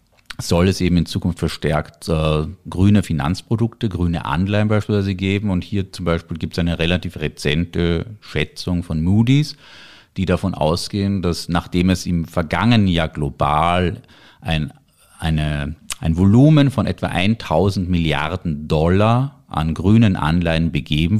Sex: male